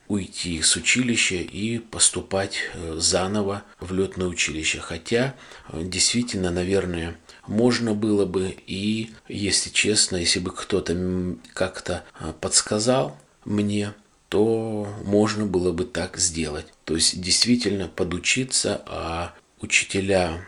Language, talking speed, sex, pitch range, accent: Russian, 105 wpm, male, 85-105 Hz, native